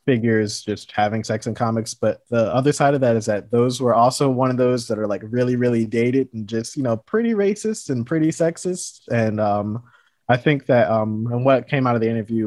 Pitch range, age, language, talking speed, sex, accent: 110-125 Hz, 20-39, English, 230 wpm, male, American